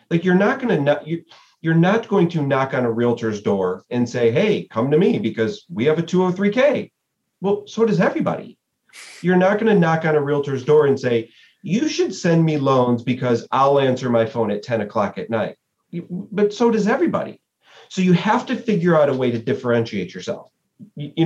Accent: American